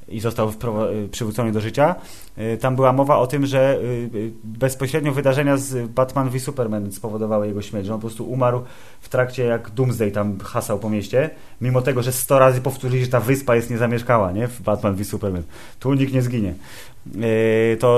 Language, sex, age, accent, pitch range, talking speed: Polish, male, 20-39, native, 100-120 Hz, 175 wpm